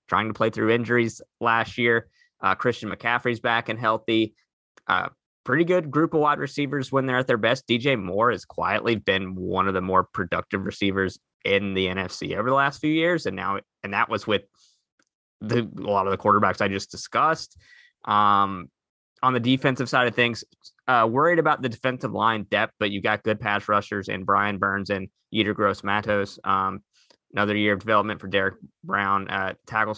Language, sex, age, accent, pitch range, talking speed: English, male, 20-39, American, 100-115 Hz, 190 wpm